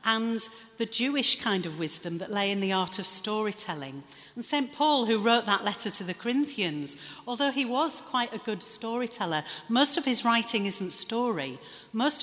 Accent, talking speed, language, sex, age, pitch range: British, 180 wpm, English, female, 40-59, 185-235 Hz